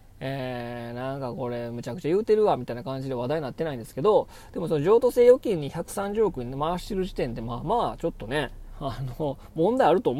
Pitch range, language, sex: 120-170 Hz, Japanese, male